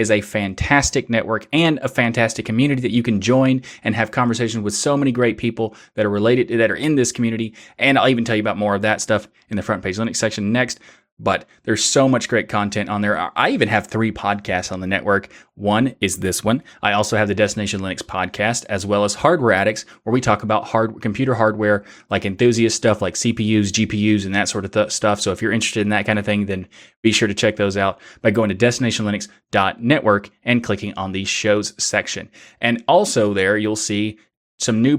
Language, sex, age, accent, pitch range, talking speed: English, male, 20-39, American, 105-120 Hz, 225 wpm